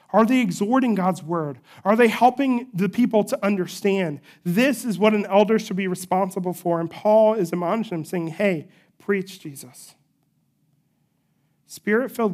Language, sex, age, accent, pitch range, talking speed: English, male, 40-59, American, 170-210 Hz, 150 wpm